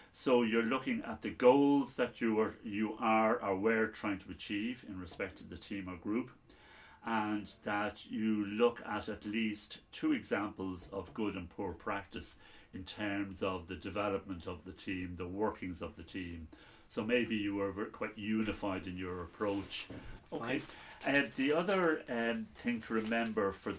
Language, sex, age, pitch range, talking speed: English, male, 60-79, 90-110 Hz, 170 wpm